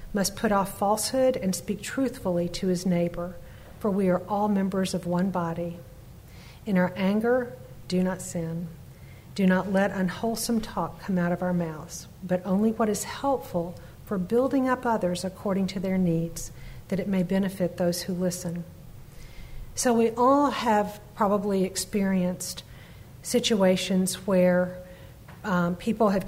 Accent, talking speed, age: American, 150 wpm, 50-69